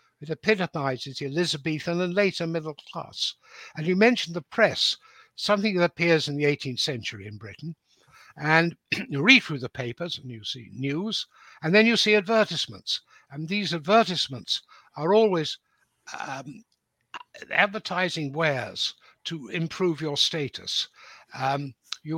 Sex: male